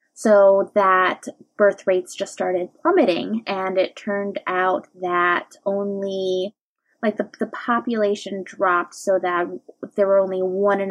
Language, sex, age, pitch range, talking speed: English, female, 20-39, 195-235 Hz, 140 wpm